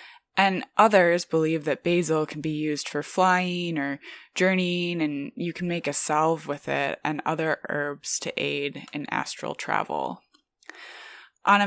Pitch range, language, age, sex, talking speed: 150-180 Hz, English, 20-39, female, 155 wpm